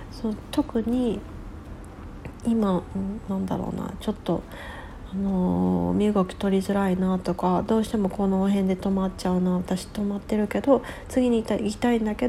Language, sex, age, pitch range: Japanese, female, 40-59, 185-225 Hz